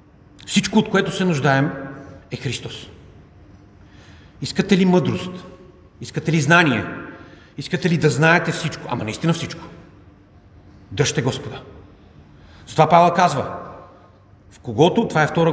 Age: 40-59